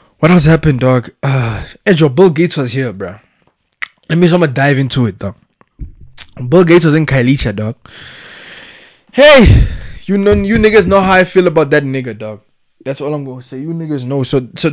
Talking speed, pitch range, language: 190 wpm, 130-165 Hz, English